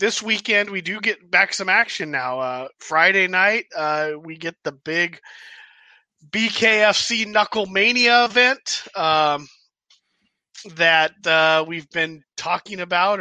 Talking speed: 125 wpm